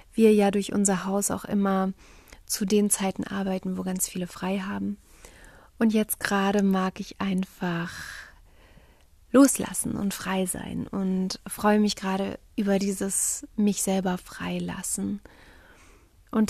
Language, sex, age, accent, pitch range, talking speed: German, female, 30-49, German, 190-210 Hz, 130 wpm